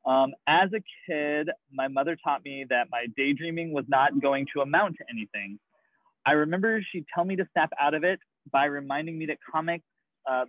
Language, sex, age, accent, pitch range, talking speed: English, male, 20-39, American, 130-180 Hz, 195 wpm